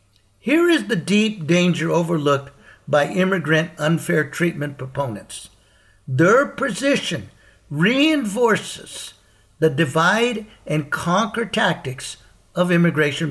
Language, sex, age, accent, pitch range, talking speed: English, male, 60-79, American, 150-220 Hz, 85 wpm